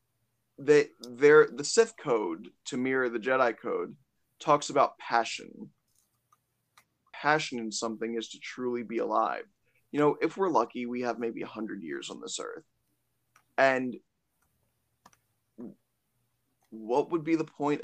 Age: 20-39